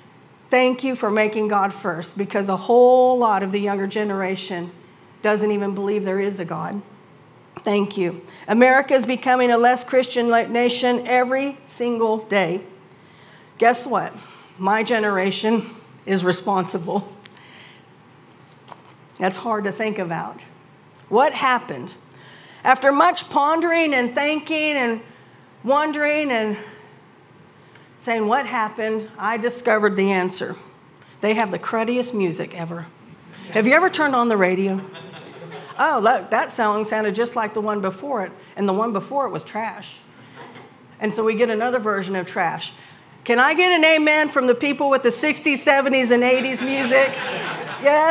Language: English